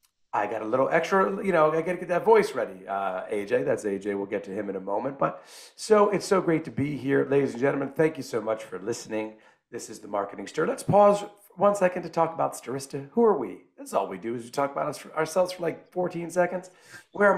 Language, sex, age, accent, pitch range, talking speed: English, male, 40-59, American, 130-210 Hz, 245 wpm